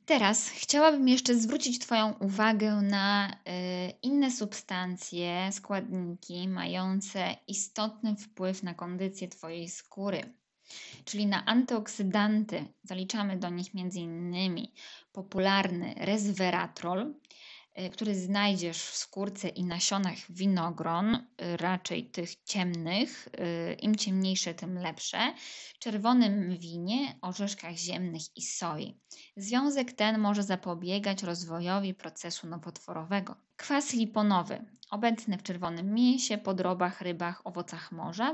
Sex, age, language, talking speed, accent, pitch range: female, 20-39, Polish, 100 wpm, native, 180-230 Hz